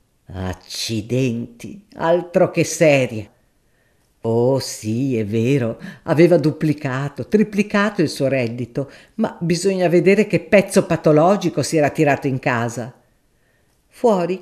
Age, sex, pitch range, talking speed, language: 50-69, female, 140-175 Hz, 110 wpm, Italian